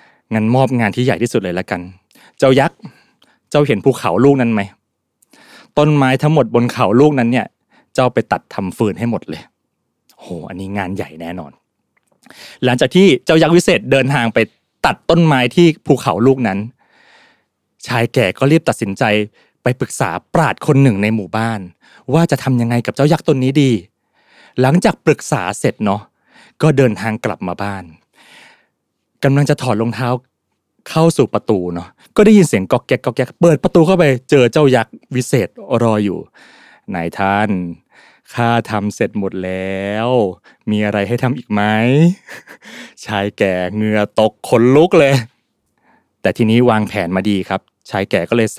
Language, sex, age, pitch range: Thai, male, 20-39, 105-140 Hz